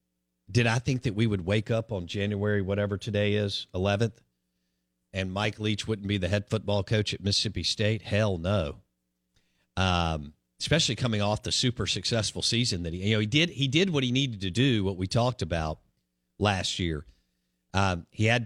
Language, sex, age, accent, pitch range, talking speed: English, male, 50-69, American, 80-115 Hz, 190 wpm